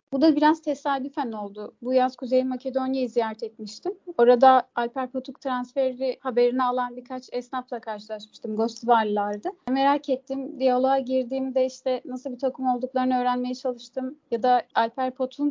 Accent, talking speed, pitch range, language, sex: native, 140 wpm, 235-275 Hz, Turkish, female